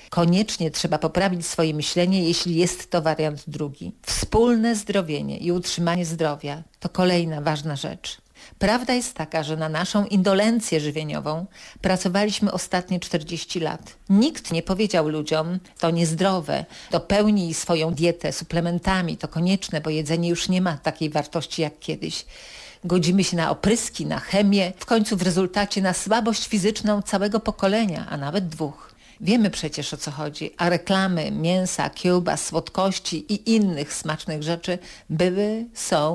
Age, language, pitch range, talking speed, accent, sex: 50-69, Polish, 160-200 Hz, 145 wpm, native, female